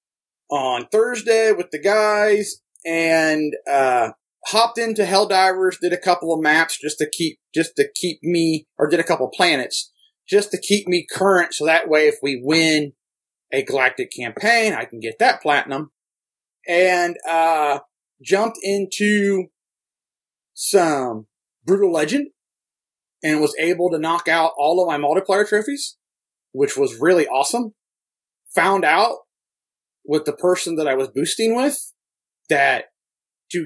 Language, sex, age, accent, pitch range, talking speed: English, male, 30-49, American, 160-220 Hz, 145 wpm